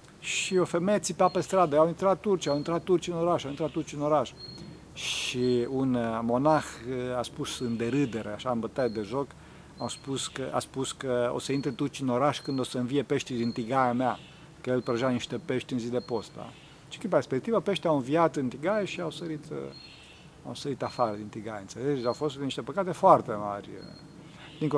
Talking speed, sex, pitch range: 205 wpm, male, 125-165 Hz